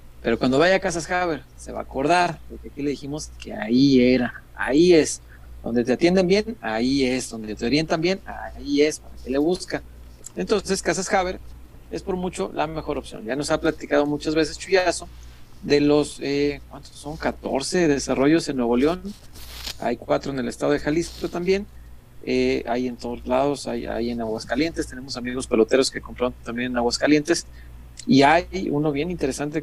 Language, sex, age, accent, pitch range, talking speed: Spanish, male, 40-59, Mexican, 115-160 Hz, 185 wpm